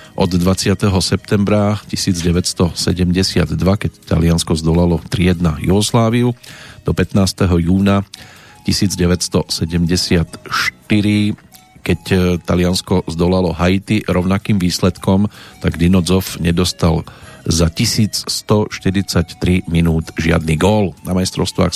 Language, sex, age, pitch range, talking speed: Slovak, male, 40-59, 90-105 Hz, 80 wpm